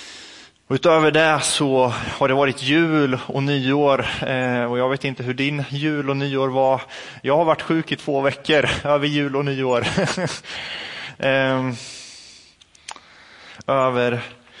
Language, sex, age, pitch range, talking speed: Swedish, male, 20-39, 95-135 Hz, 125 wpm